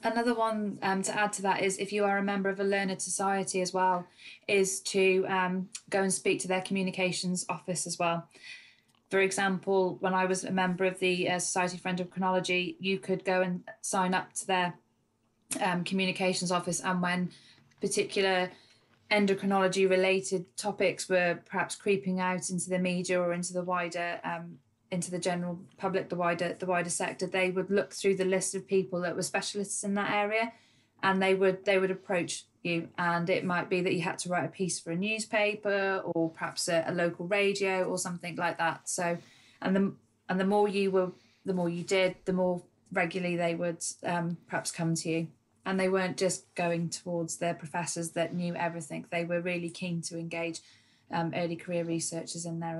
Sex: female